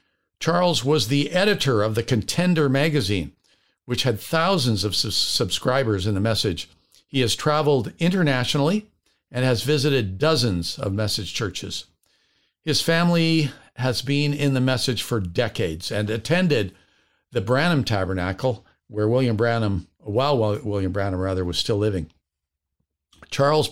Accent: American